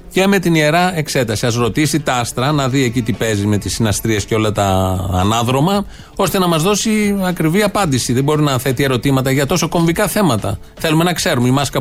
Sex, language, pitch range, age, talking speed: male, Greek, 110-160 Hz, 30-49, 210 wpm